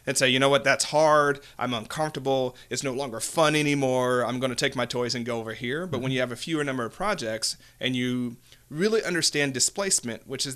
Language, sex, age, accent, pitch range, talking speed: English, male, 40-59, American, 120-140 Hz, 225 wpm